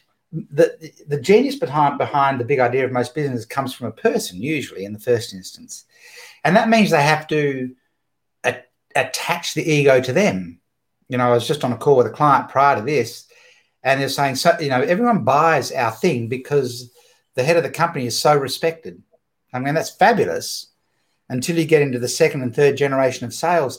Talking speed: 200 wpm